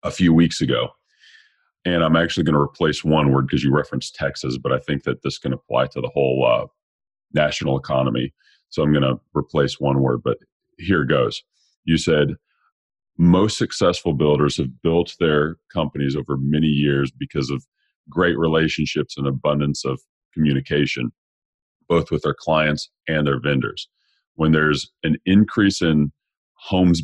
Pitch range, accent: 75-85 Hz, American